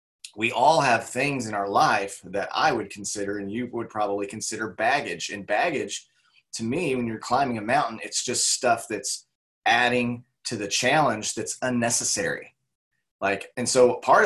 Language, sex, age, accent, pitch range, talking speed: English, male, 30-49, American, 100-130 Hz, 170 wpm